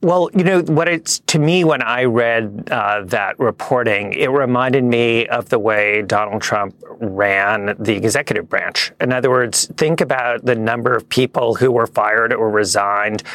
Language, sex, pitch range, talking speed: English, male, 105-130 Hz, 175 wpm